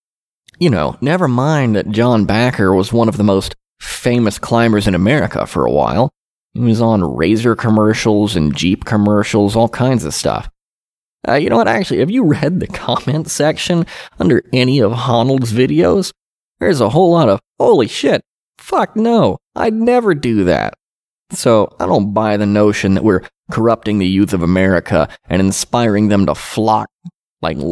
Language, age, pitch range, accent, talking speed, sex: English, 20-39, 100-120 Hz, American, 170 wpm, male